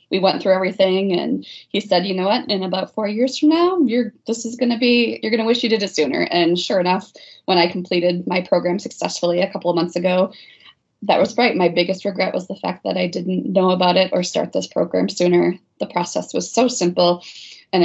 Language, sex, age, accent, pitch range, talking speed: English, female, 20-39, American, 175-205 Hz, 235 wpm